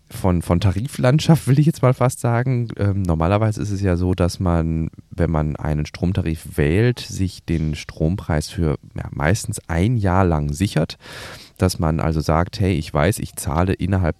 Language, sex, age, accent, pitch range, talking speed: German, male, 30-49, German, 80-105 Hz, 170 wpm